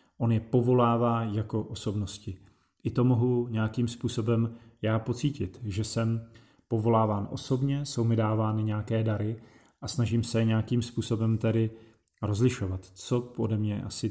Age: 30-49